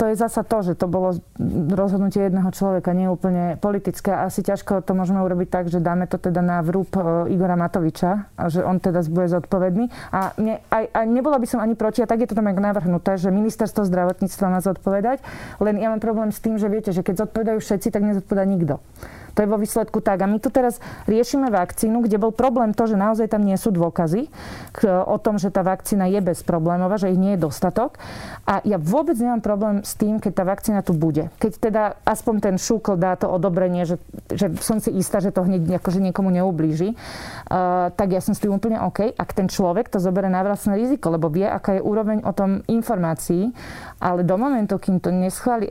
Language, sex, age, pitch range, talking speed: Slovak, female, 30-49, 185-215 Hz, 210 wpm